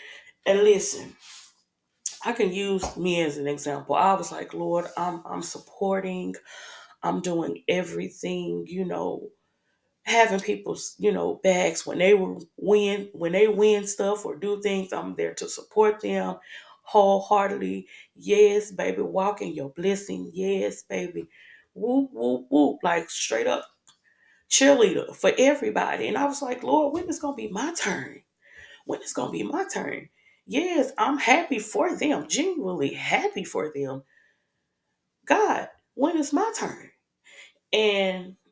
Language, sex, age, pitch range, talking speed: English, female, 20-39, 150-215 Hz, 140 wpm